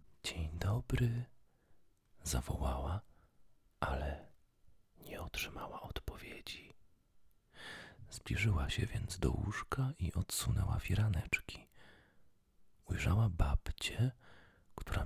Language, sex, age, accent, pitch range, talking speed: Polish, male, 40-59, native, 75-105 Hz, 70 wpm